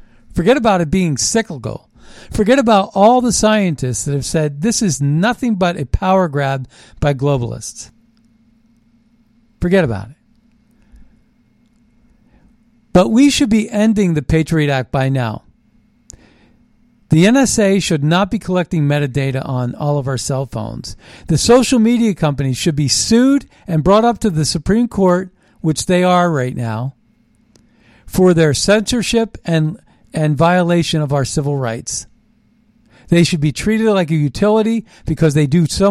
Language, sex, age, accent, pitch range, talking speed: English, male, 50-69, American, 145-210 Hz, 145 wpm